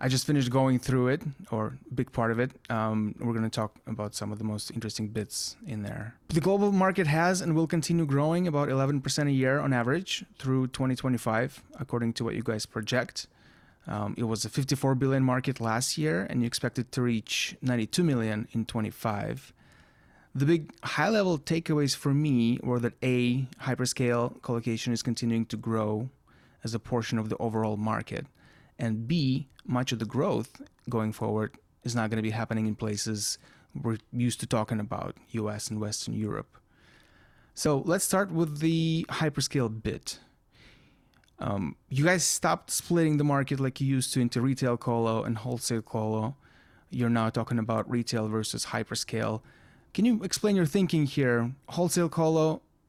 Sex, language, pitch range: male, English, 110-145 Hz